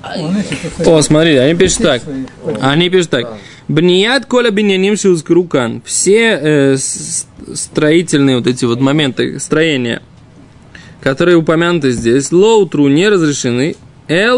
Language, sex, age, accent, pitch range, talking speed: Russian, male, 20-39, native, 135-180 Hz, 105 wpm